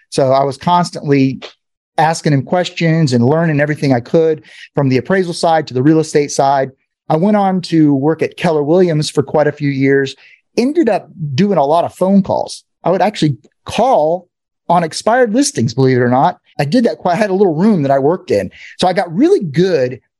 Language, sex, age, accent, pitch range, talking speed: English, male, 30-49, American, 140-180 Hz, 210 wpm